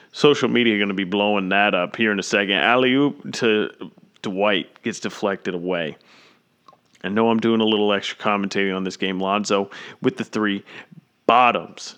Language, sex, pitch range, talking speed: English, male, 105-140 Hz, 180 wpm